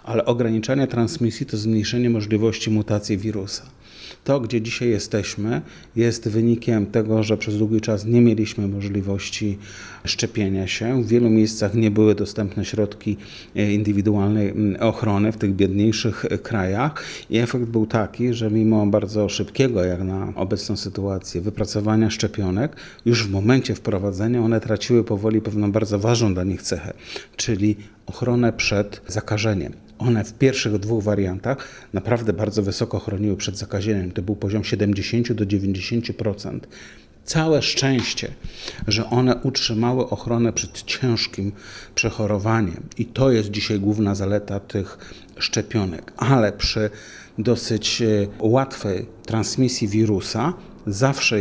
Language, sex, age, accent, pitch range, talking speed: Polish, male, 30-49, native, 105-115 Hz, 125 wpm